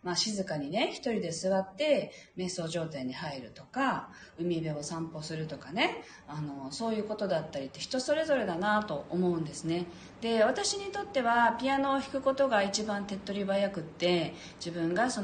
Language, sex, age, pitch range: Japanese, female, 40-59, 170-270 Hz